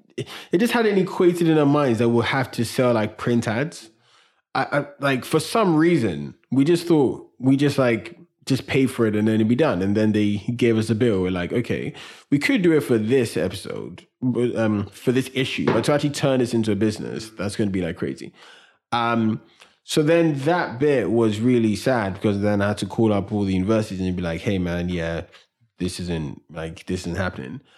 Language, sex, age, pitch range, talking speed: English, male, 20-39, 105-130 Hz, 220 wpm